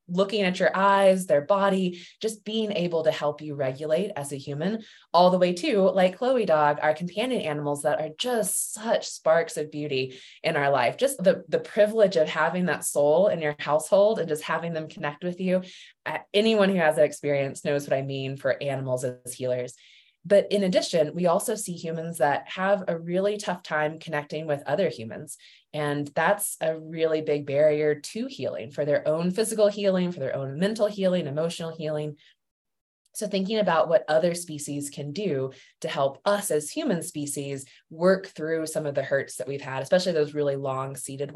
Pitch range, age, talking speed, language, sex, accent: 150-200 Hz, 20-39, 190 wpm, English, female, American